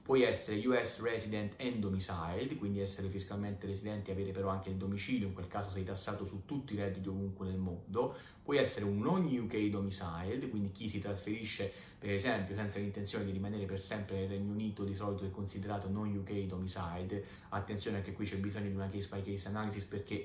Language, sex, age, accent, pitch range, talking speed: Italian, male, 30-49, native, 95-110 Hz, 200 wpm